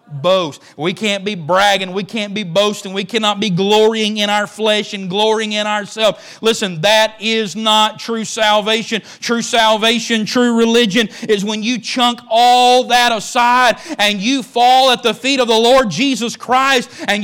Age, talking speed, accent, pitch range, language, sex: 40-59, 170 wpm, American, 170-230 Hz, English, male